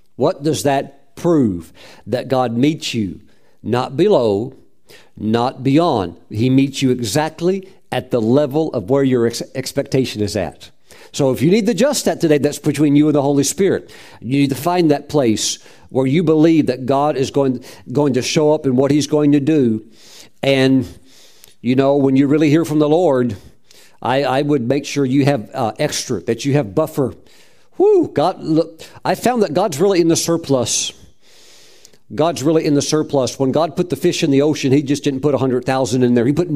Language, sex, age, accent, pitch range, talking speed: English, male, 50-69, American, 125-150 Hz, 195 wpm